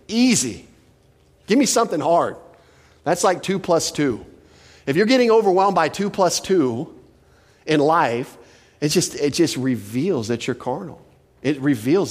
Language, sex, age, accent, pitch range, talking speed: English, male, 40-59, American, 115-150 Hz, 150 wpm